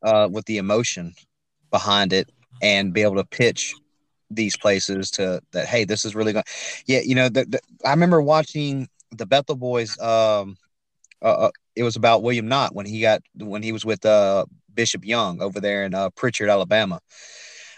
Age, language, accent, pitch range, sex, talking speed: 30-49, English, American, 105-120 Hz, male, 185 wpm